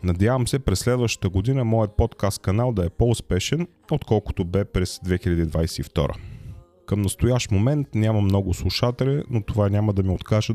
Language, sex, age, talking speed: Bulgarian, male, 30-49, 150 wpm